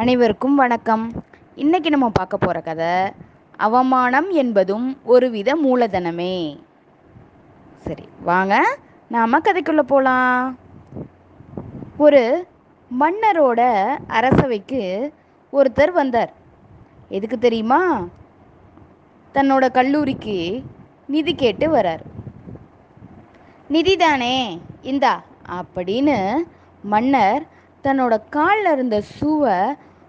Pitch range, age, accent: 225-295 Hz, 20-39, native